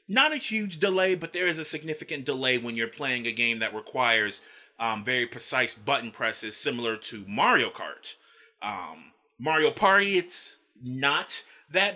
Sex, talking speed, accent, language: male, 160 wpm, American, English